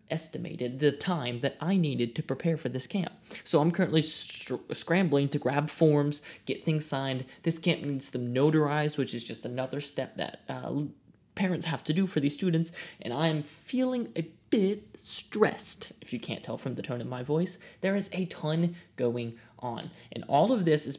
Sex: male